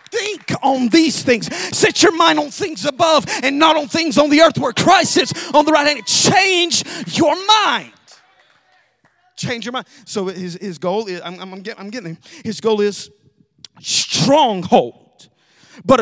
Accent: American